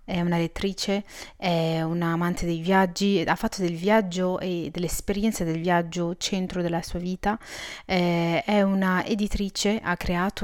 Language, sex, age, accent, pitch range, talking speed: Italian, female, 30-49, native, 180-200 Hz, 145 wpm